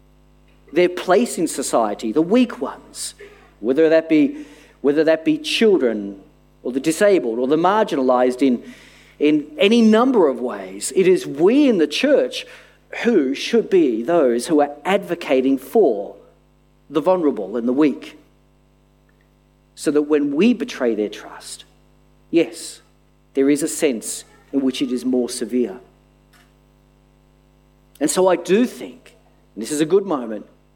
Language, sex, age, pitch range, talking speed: English, male, 40-59, 125-170 Hz, 145 wpm